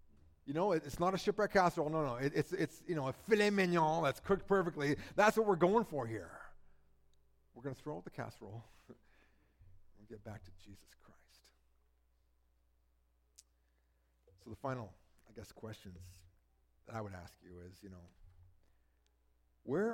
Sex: male